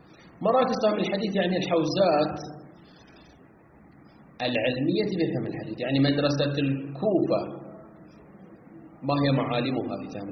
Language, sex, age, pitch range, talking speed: Arabic, male, 30-49, 115-155 Hz, 85 wpm